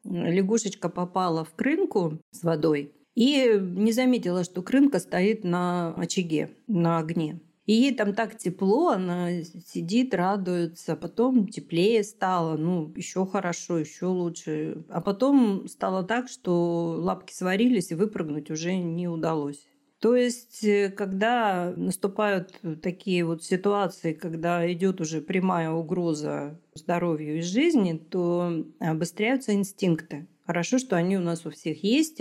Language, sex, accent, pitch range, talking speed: Russian, female, native, 165-200 Hz, 130 wpm